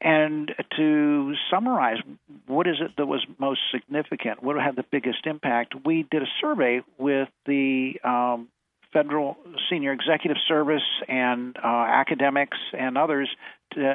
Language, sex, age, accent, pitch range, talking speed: English, male, 50-69, American, 120-140 Hz, 140 wpm